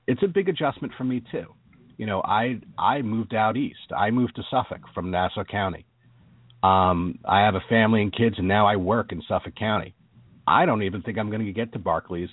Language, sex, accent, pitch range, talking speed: English, male, American, 95-130 Hz, 220 wpm